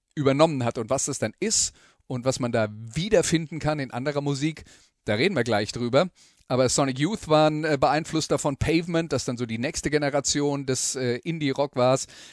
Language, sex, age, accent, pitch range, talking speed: German, male, 40-59, German, 125-155 Hz, 190 wpm